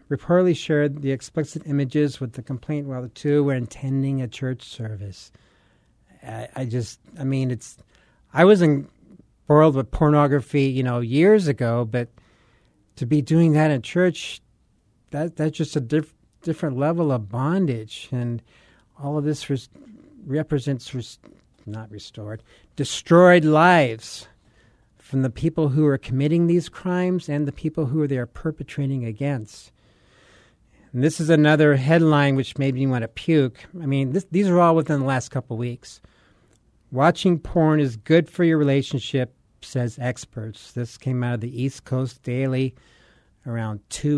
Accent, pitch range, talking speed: American, 120-150 Hz, 160 wpm